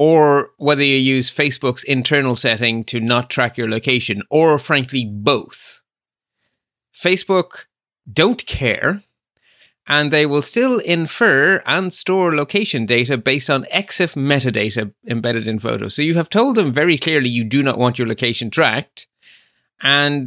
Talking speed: 145 wpm